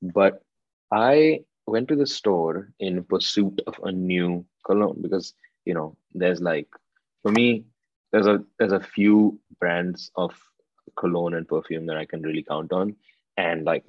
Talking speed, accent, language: 160 wpm, Indian, English